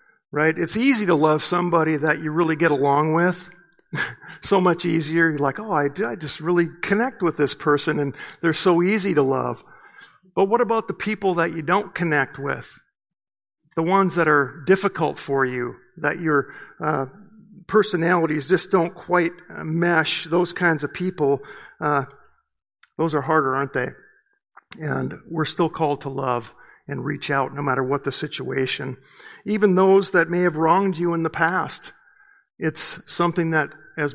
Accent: American